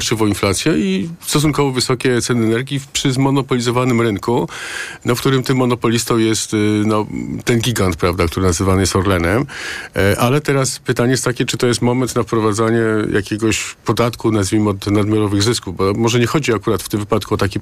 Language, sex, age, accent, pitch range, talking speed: Polish, male, 50-69, native, 100-120 Hz, 160 wpm